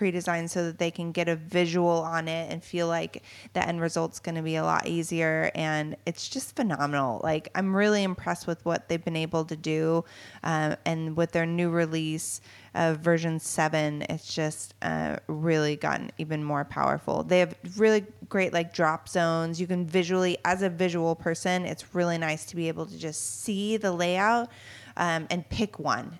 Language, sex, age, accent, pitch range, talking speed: English, female, 20-39, American, 160-185 Hz, 190 wpm